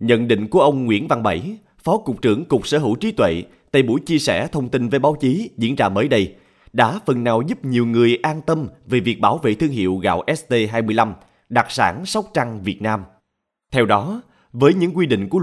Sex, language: male, Vietnamese